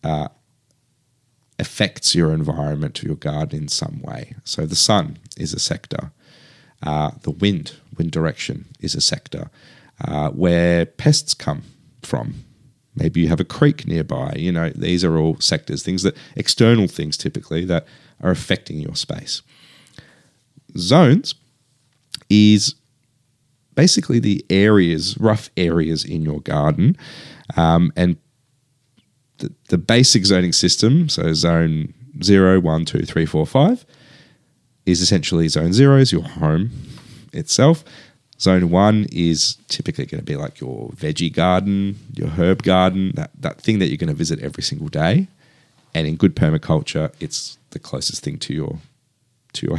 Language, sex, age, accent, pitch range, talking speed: English, male, 40-59, Australian, 90-145 Hz, 145 wpm